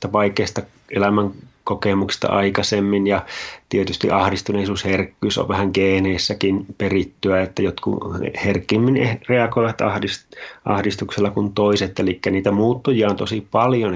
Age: 30-49